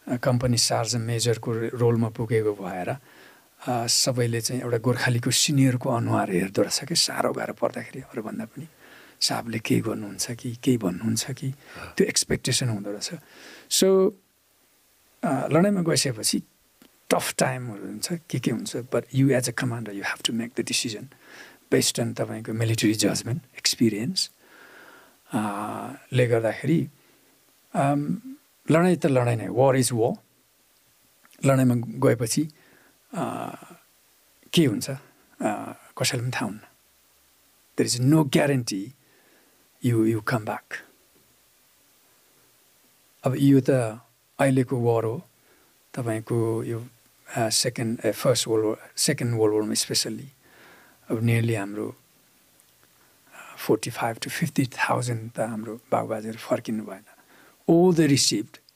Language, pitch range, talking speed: English, 110-135 Hz, 70 wpm